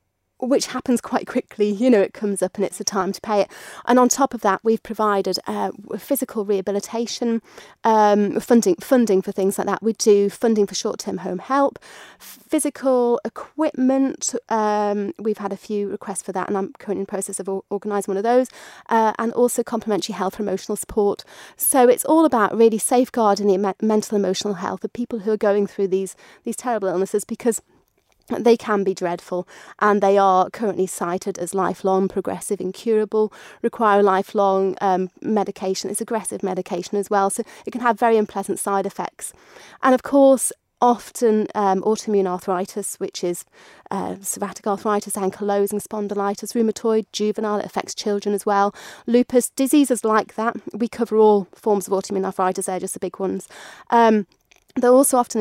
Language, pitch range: English, 195-230 Hz